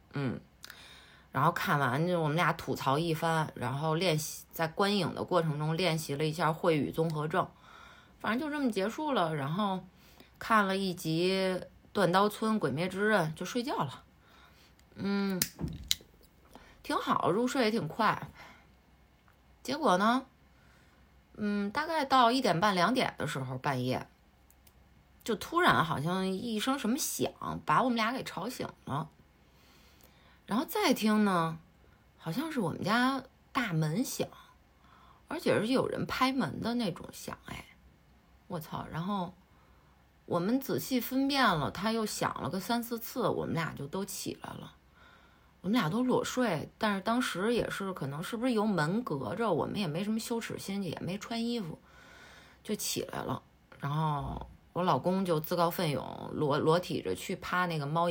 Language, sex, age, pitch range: Chinese, female, 20-39, 150-225 Hz